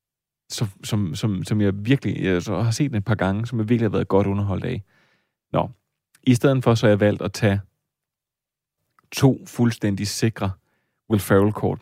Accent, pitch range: native, 100-115 Hz